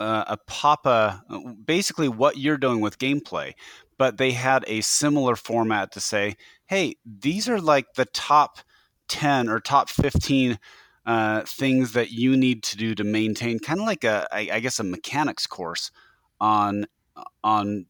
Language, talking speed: English, 160 wpm